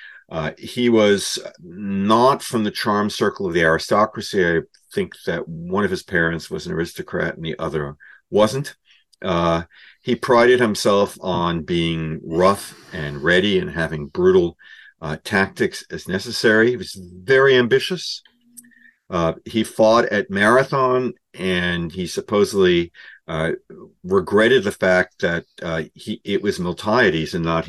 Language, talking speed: English, 140 wpm